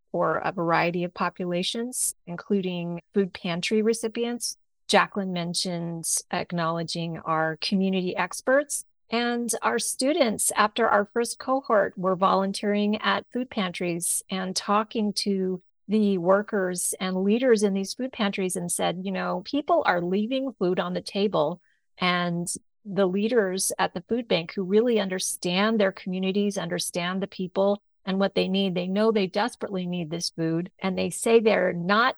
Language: English